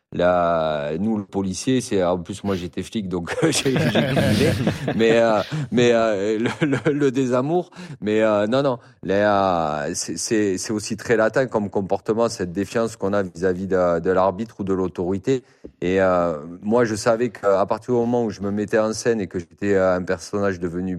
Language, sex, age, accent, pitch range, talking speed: French, male, 40-59, French, 95-115 Hz, 185 wpm